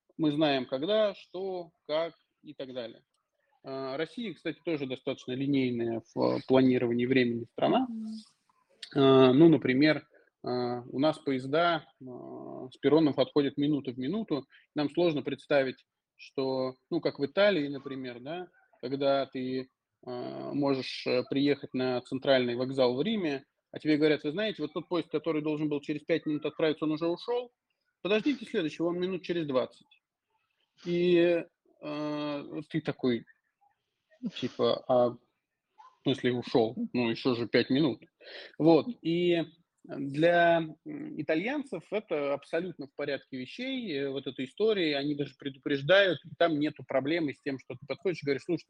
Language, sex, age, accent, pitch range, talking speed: Russian, male, 20-39, native, 135-175 Hz, 140 wpm